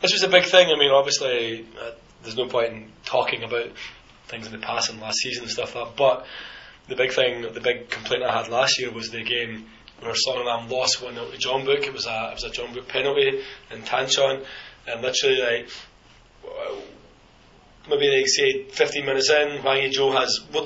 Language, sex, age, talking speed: English, male, 20-39, 215 wpm